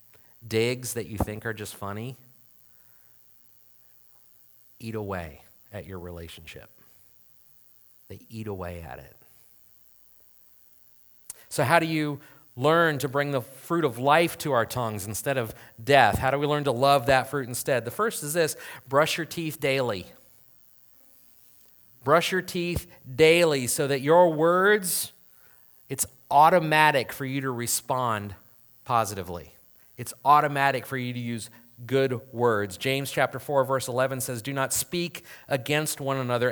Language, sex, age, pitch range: English, male, 40-59, 110-150 Hz